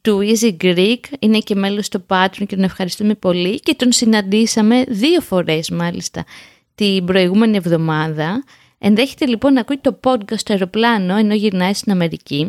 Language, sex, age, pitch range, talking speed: Greek, female, 20-39, 190-260 Hz, 160 wpm